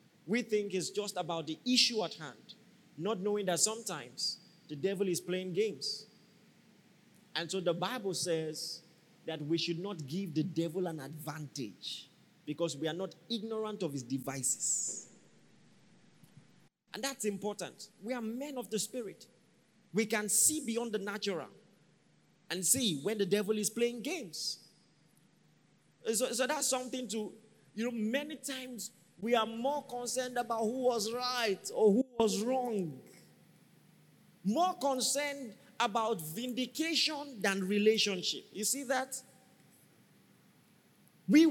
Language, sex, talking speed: English, male, 135 wpm